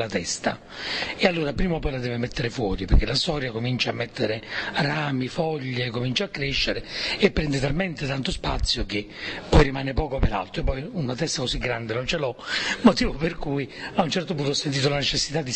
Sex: male